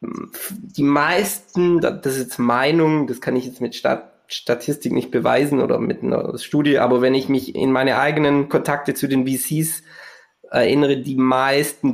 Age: 20-39